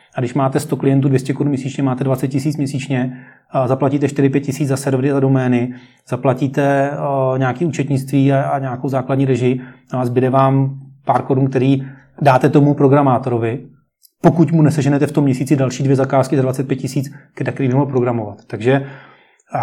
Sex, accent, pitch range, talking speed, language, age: male, native, 130-150 Hz, 160 wpm, Czech, 30-49